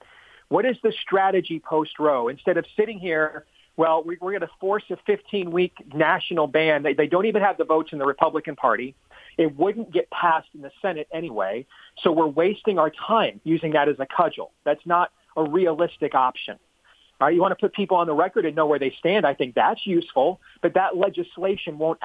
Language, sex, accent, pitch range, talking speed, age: English, male, American, 155-195 Hz, 205 wpm, 40-59